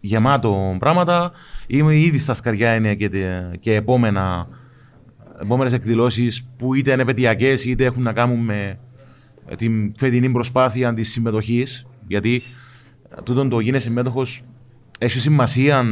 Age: 30-49